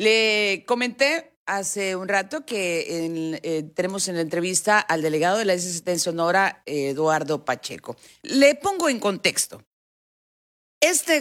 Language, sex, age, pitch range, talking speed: Spanish, female, 40-59, 150-205 Hz, 135 wpm